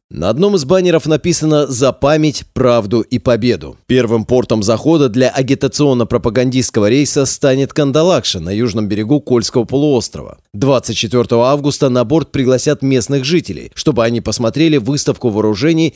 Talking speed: 130 wpm